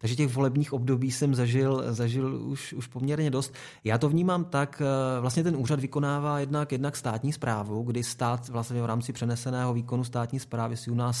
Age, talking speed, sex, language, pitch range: 30-49, 190 wpm, male, Czech, 115-130 Hz